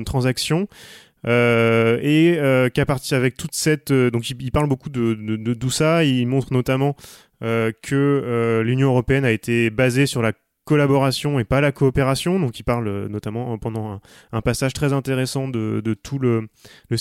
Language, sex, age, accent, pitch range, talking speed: French, male, 20-39, French, 120-145 Hz, 185 wpm